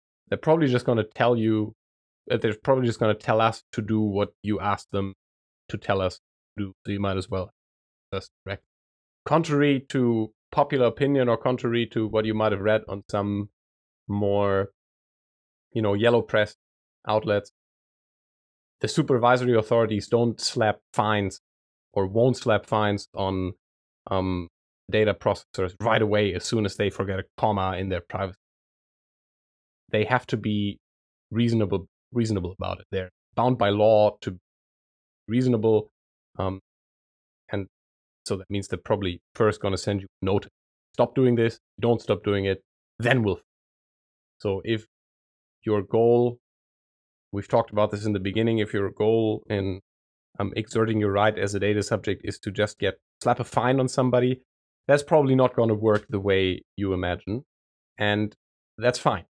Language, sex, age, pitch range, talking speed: English, male, 30-49, 95-115 Hz, 160 wpm